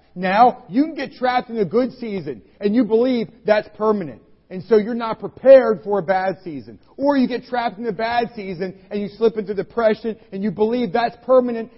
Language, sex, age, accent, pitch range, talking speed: English, male, 40-59, American, 200-250 Hz, 210 wpm